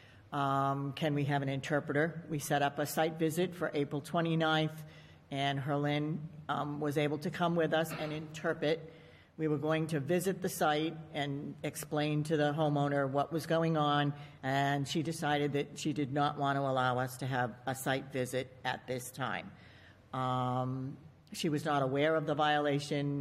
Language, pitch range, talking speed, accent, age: English, 135-160 Hz, 180 wpm, American, 50-69